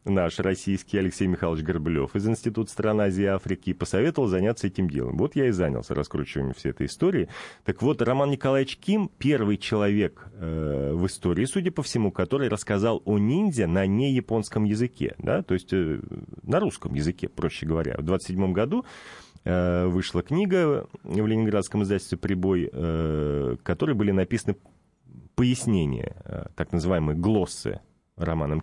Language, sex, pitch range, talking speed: Russian, male, 90-115 Hz, 155 wpm